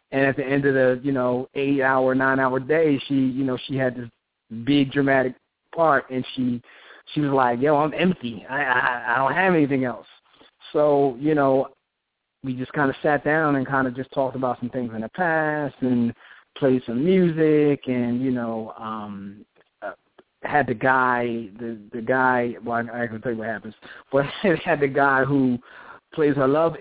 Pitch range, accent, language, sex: 120-140 Hz, American, English, male